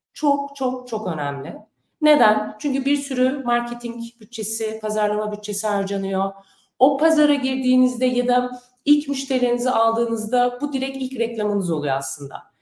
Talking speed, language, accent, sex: 130 wpm, Turkish, native, female